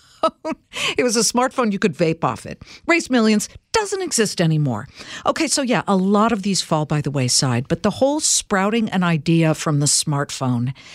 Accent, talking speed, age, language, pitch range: American, 185 wpm, 50-69, English, 155-225 Hz